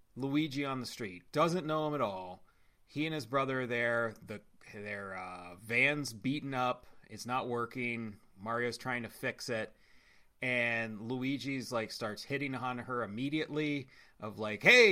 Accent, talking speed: American, 160 wpm